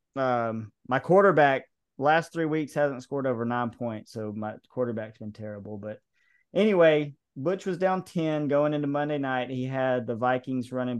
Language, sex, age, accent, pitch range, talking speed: English, male, 30-49, American, 115-145 Hz, 170 wpm